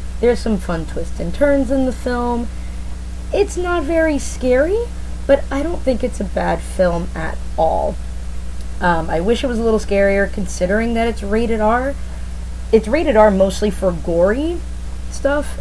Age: 20-39